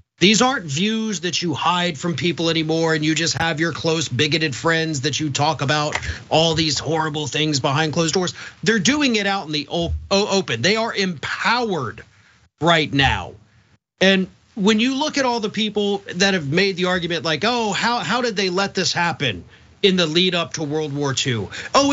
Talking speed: 190 wpm